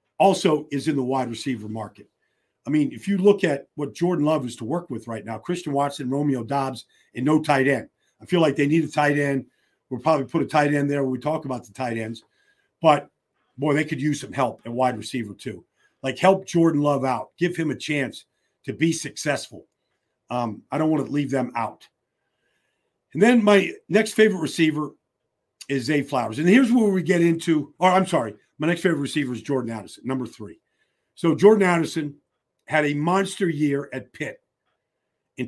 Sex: male